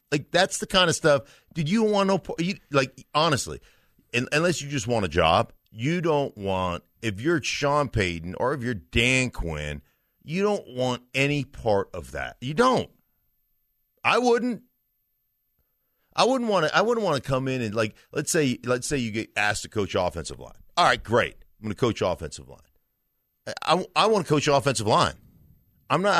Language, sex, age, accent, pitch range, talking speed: English, male, 50-69, American, 115-165 Hz, 190 wpm